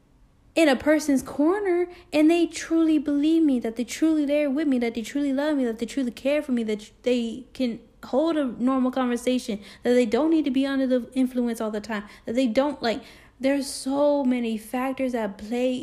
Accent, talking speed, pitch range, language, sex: American, 210 wpm, 235-285 Hz, English, female